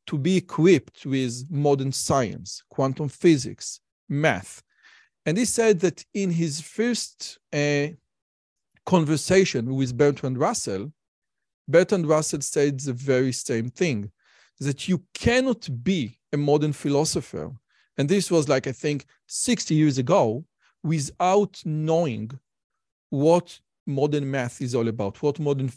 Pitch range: 135-180 Hz